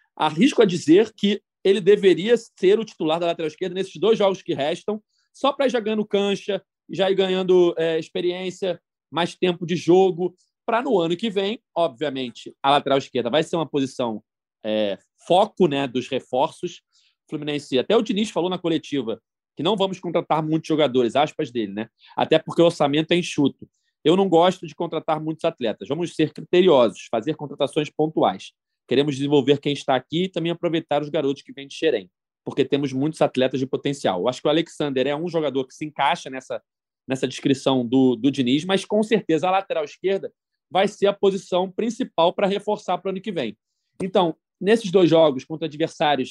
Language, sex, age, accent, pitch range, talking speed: Portuguese, male, 30-49, Brazilian, 145-190 Hz, 185 wpm